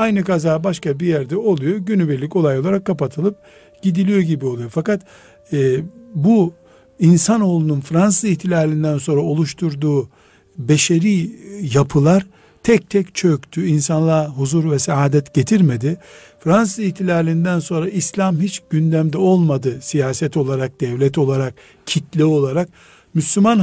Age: 60-79